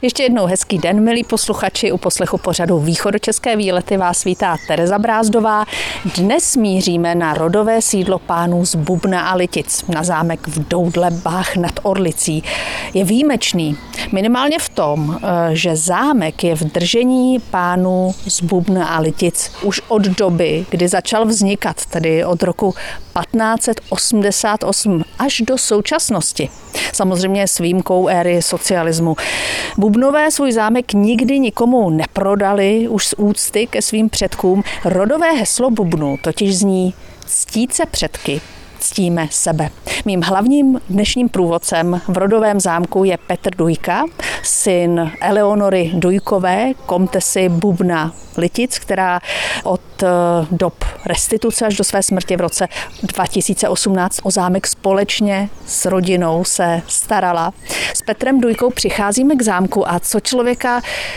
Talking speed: 125 wpm